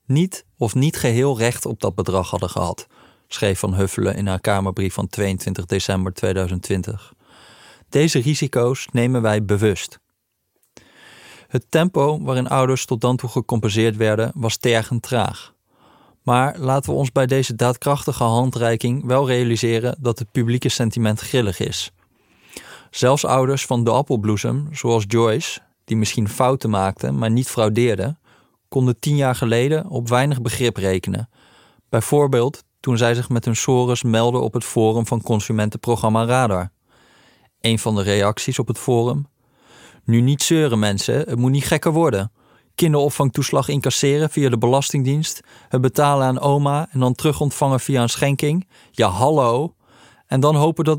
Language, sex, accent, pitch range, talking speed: Dutch, male, Dutch, 110-135 Hz, 150 wpm